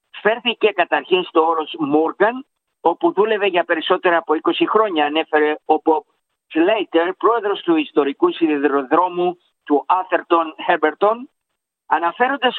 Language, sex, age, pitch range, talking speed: Greek, male, 50-69, 160-240 Hz, 115 wpm